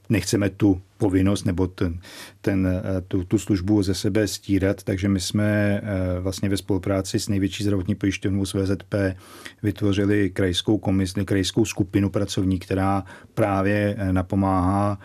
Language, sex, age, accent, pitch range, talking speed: Czech, male, 40-59, native, 95-105 Hz, 130 wpm